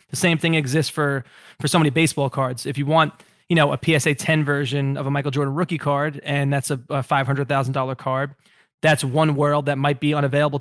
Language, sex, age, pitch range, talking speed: English, male, 20-39, 140-150 Hz, 230 wpm